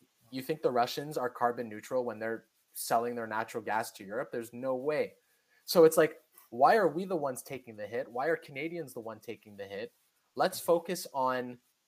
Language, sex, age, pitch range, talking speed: English, male, 20-39, 120-155 Hz, 200 wpm